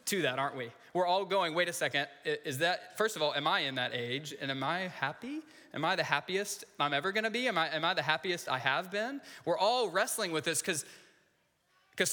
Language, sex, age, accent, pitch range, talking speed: English, male, 20-39, American, 140-200 Hz, 230 wpm